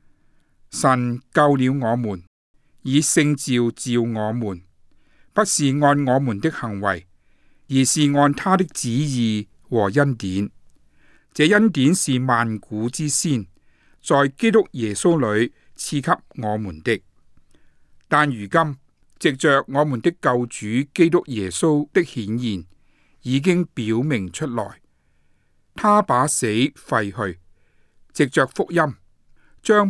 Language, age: Chinese, 60-79